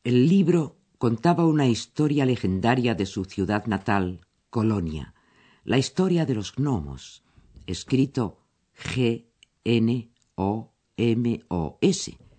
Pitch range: 95-140 Hz